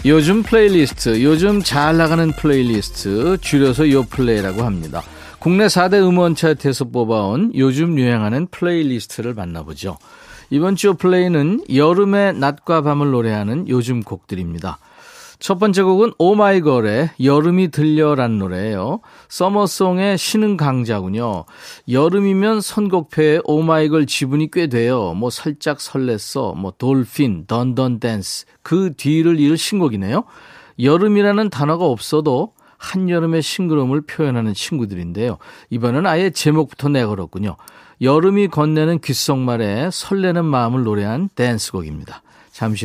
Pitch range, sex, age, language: 120-175 Hz, male, 40-59, Korean